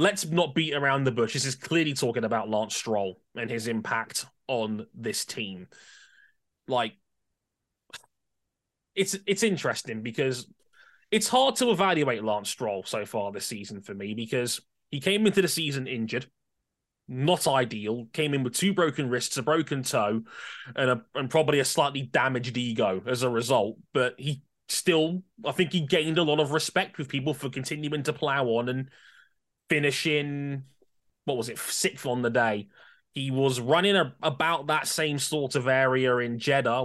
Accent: British